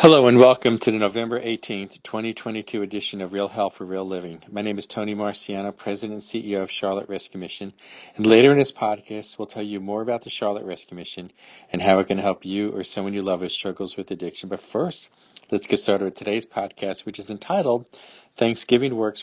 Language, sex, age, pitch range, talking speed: English, male, 40-59, 95-110 Hz, 210 wpm